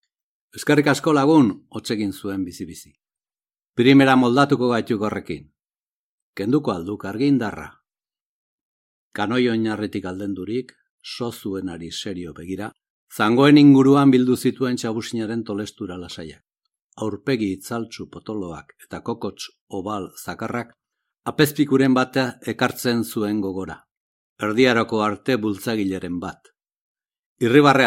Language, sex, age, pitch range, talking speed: Spanish, male, 60-79, 95-125 Hz, 90 wpm